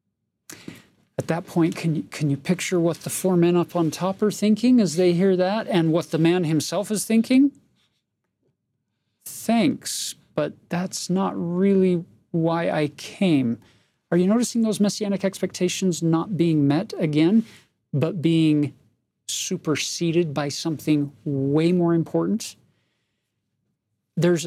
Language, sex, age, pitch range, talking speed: English, male, 40-59, 145-185 Hz, 135 wpm